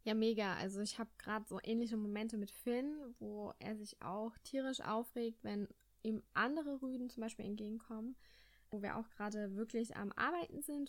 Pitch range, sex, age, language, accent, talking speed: 215-265 Hz, female, 10-29, German, German, 175 wpm